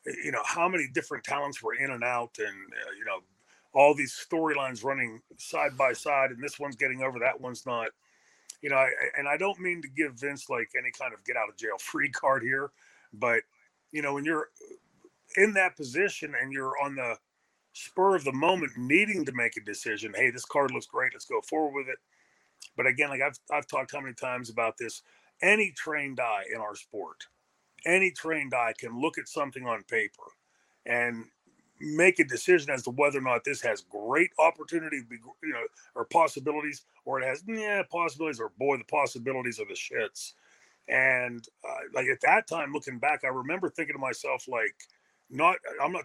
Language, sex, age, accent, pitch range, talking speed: English, male, 40-59, American, 130-170 Hz, 200 wpm